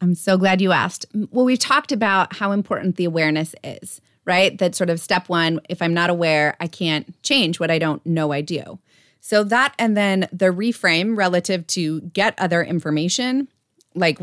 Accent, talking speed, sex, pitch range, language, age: American, 190 wpm, female, 170-215 Hz, English, 30-49